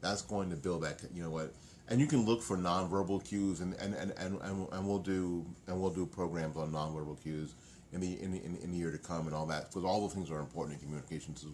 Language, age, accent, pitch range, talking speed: English, 40-59, American, 80-95 Hz, 255 wpm